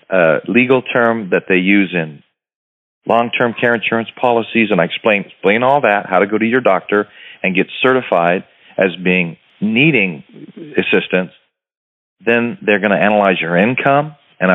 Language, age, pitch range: English, 40-59, 95-120 Hz